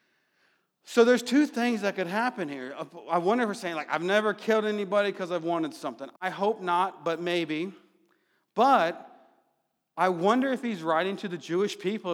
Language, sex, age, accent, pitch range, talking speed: English, male, 40-59, American, 165-205 Hz, 185 wpm